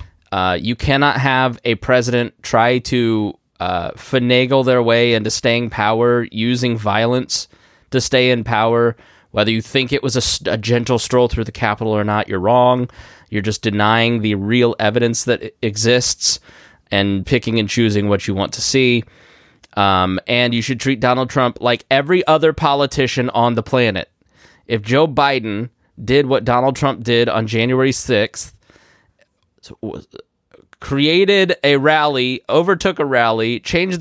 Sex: male